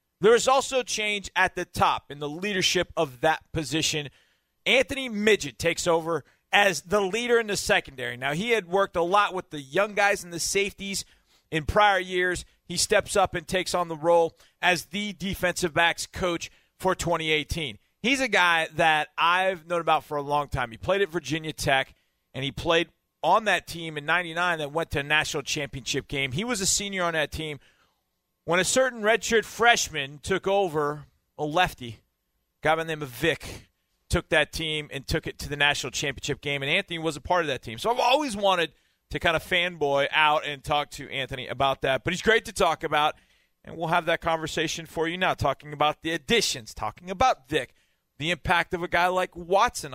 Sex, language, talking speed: male, English, 205 wpm